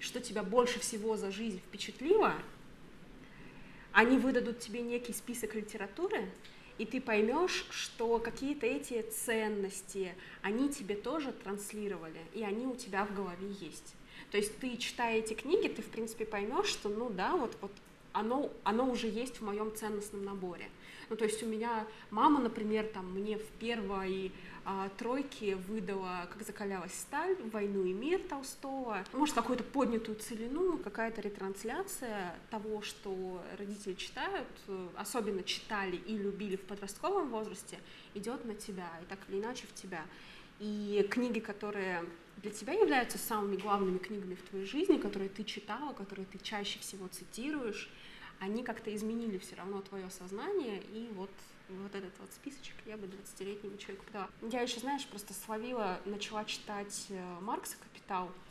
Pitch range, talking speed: 195-235 Hz, 155 wpm